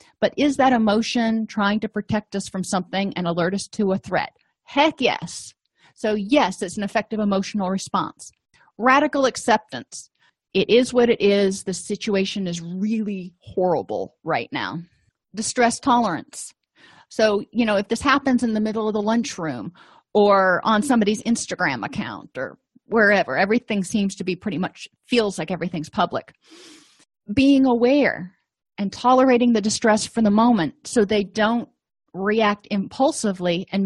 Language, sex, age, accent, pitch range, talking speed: English, female, 40-59, American, 190-235 Hz, 150 wpm